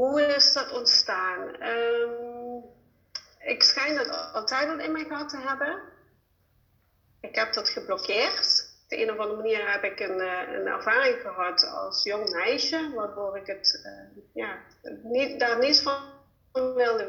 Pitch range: 205-275 Hz